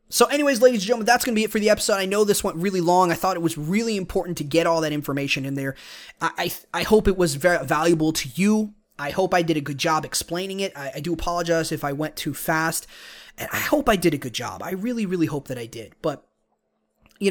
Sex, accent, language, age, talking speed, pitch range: male, American, English, 20-39, 265 wpm, 160-200 Hz